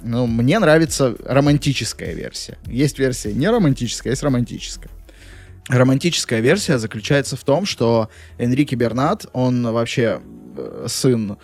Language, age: Russian, 20-39